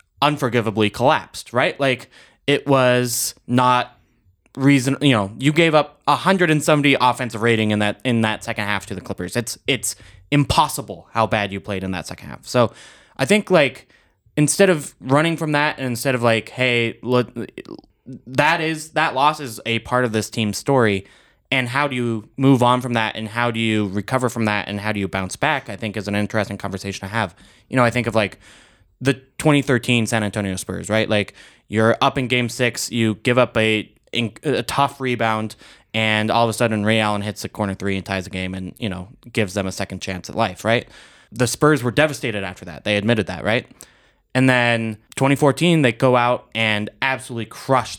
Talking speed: 200 wpm